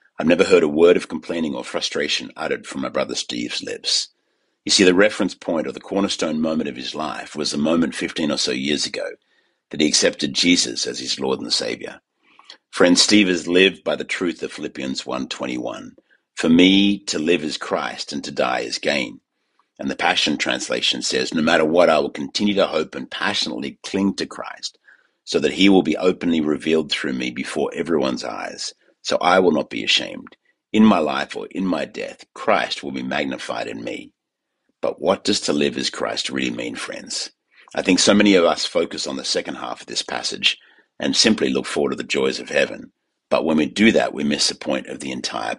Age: 50-69